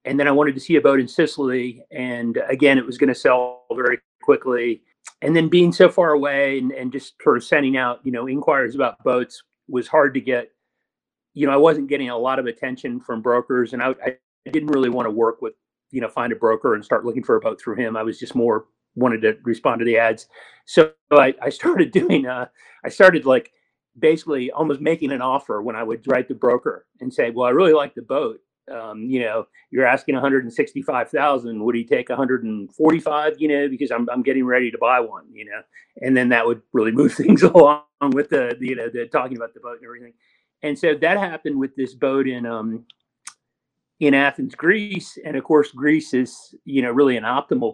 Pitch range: 120-145 Hz